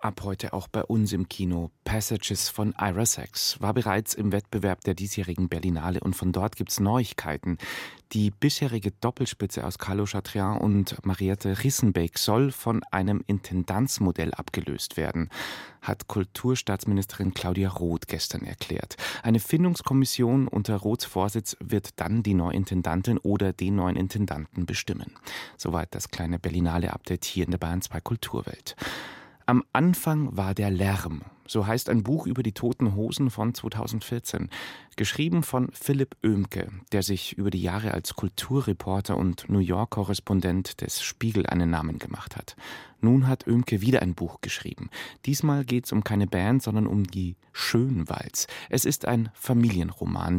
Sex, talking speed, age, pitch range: male, 150 wpm, 30-49, 95-120 Hz